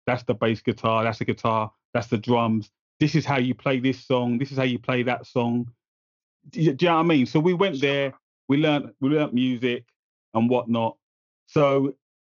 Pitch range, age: 110-140 Hz, 30-49